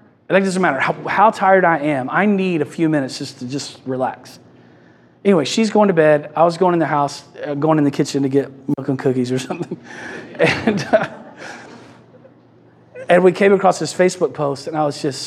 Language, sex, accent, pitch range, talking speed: English, male, American, 135-170 Hz, 210 wpm